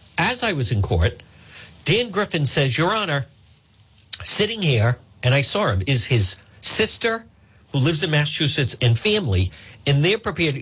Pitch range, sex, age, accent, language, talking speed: 110-165 Hz, male, 50-69, American, English, 160 wpm